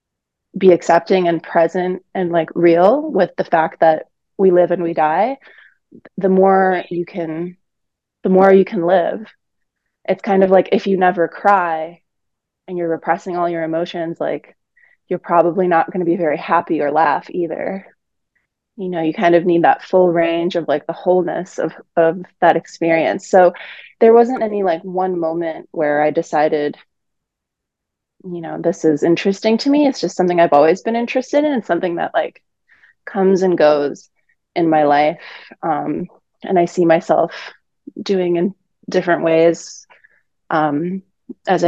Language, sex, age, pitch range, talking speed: English, female, 20-39, 165-190 Hz, 165 wpm